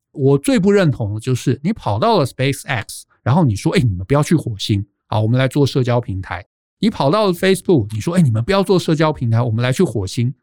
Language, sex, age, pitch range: Chinese, male, 50-69, 120-190 Hz